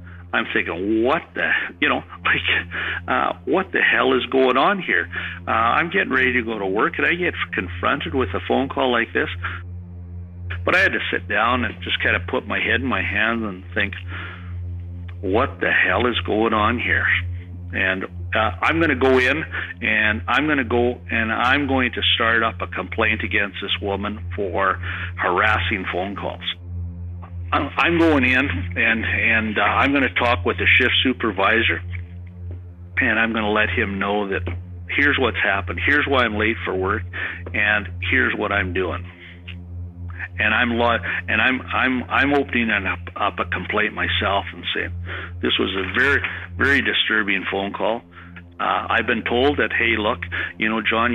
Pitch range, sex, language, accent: 90-110 Hz, male, English, American